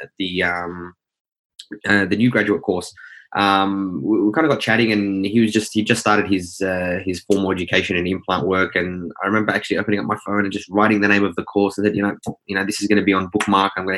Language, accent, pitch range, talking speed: English, Australian, 95-105 Hz, 260 wpm